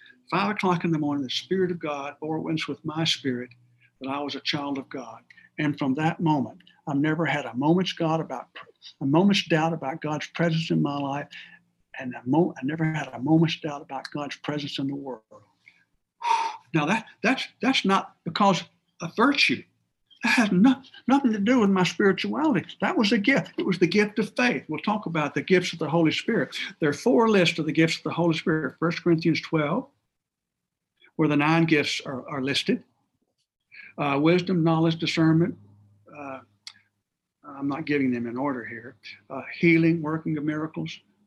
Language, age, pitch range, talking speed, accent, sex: English, 60-79, 145-180 Hz, 185 wpm, American, male